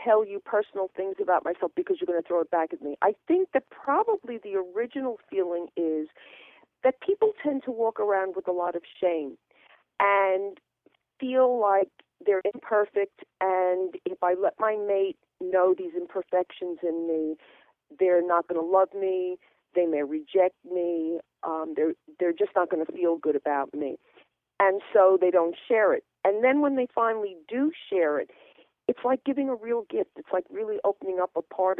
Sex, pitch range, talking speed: female, 170-240 Hz, 185 wpm